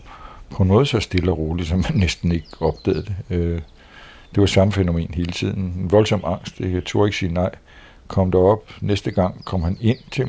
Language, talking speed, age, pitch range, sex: Danish, 200 wpm, 60-79, 80-95 Hz, male